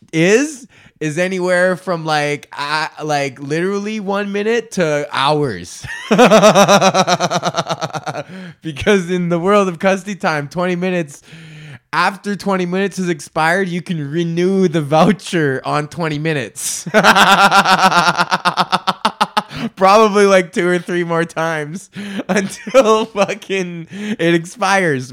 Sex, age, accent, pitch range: male, 20-39, American, 140-185 Hz